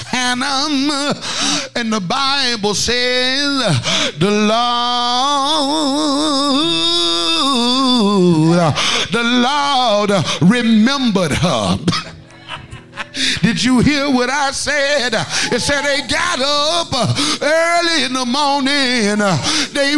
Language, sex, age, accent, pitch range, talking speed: English, male, 50-69, American, 210-280 Hz, 85 wpm